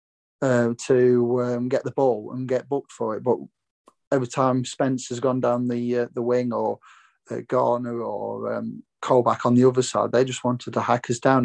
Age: 30-49